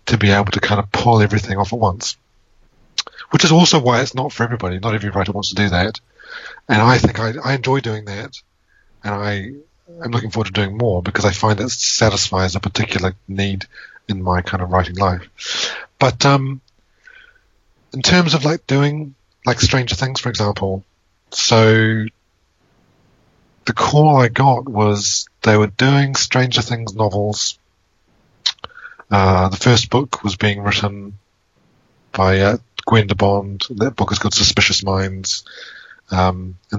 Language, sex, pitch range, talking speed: English, male, 95-120 Hz, 160 wpm